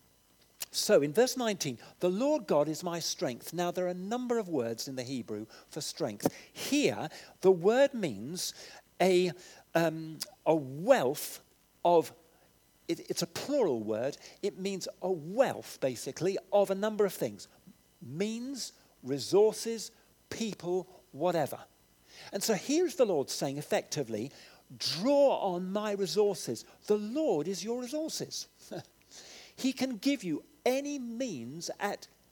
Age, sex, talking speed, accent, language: 50-69, male, 135 wpm, British, English